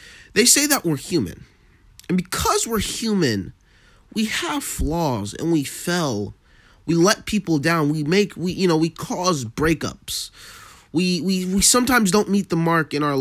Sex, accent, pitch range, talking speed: male, American, 110-180 Hz, 170 wpm